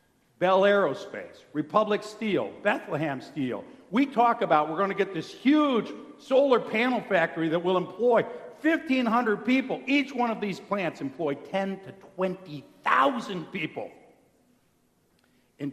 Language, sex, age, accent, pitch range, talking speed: English, male, 60-79, American, 150-225 Hz, 130 wpm